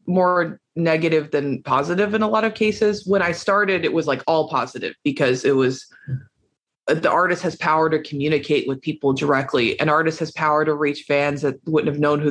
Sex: female